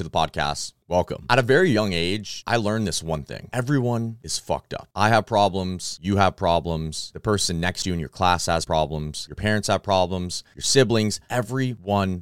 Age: 30-49